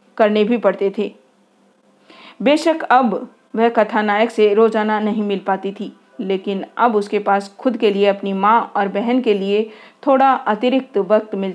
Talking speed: 160 wpm